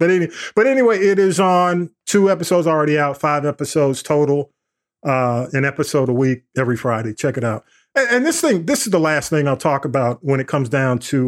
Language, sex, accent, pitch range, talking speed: English, male, American, 125-155 Hz, 220 wpm